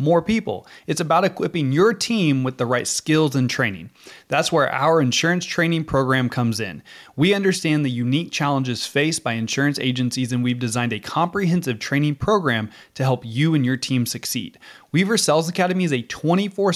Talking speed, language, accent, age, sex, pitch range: 180 wpm, English, American, 20-39, male, 125-165 Hz